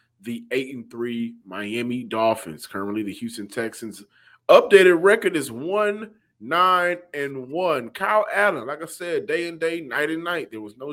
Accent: American